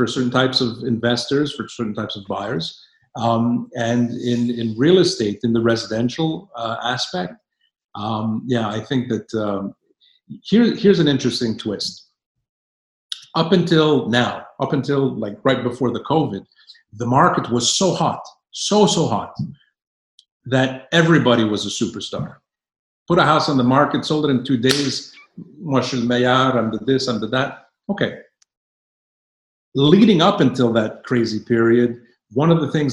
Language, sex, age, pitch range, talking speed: French, male, 50-69, 110-135 Hz, 150 wpm